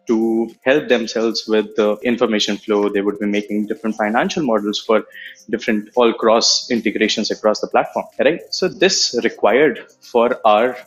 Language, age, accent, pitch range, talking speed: English, 20-39, Indian, 105-135 Hz, 150 wpm